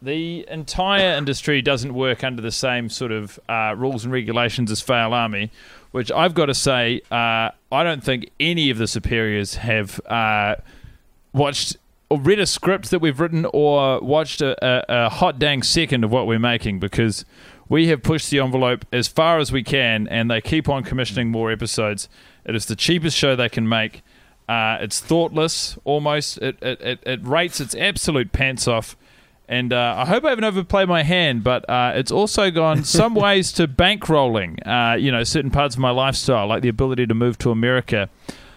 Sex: male